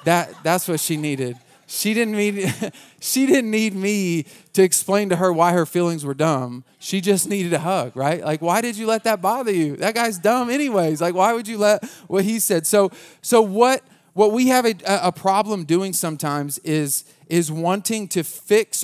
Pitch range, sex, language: 145-185 Hz, male, English